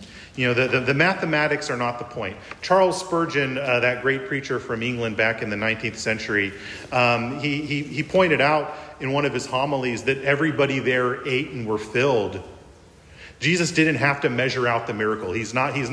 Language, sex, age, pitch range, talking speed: English, male, 40-59, 115-150 Hz, 195 wpm